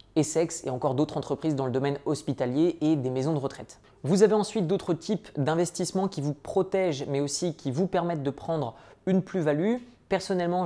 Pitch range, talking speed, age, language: 135-170 Hz, 185 wpm, 20-39, French